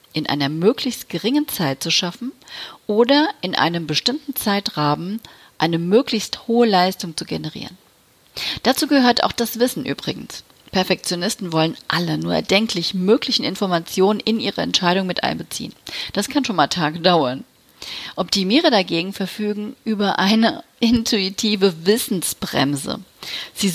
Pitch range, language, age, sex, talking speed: 180-235 Hz, German, 40-59, female, 125 wpm